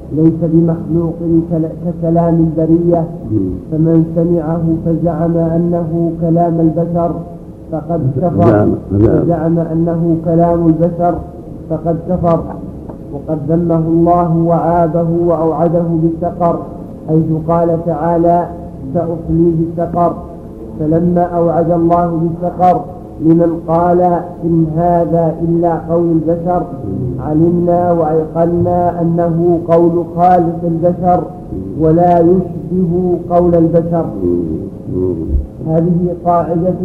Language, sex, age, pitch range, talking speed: Arabic, male, 50-69, 165-175 Hz, 85 wpm